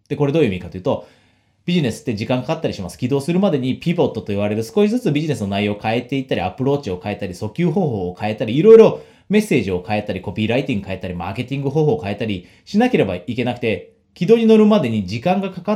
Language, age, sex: Japanese, 30-49, male